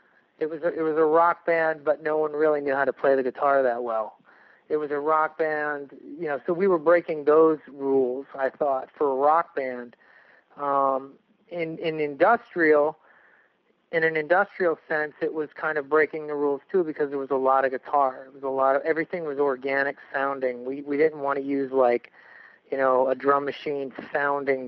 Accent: American